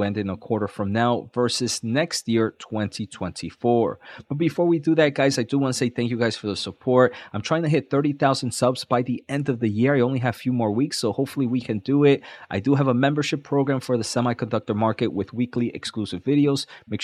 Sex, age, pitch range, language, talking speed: male, 30-49, 110-145 Hz, English, 235 wpm